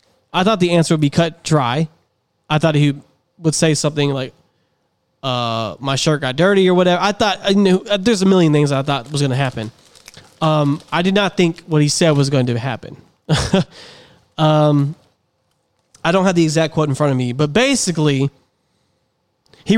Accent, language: American, English